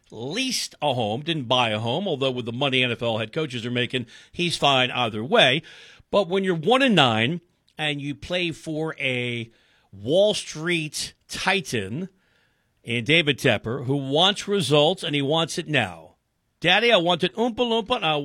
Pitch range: 125-195 Hz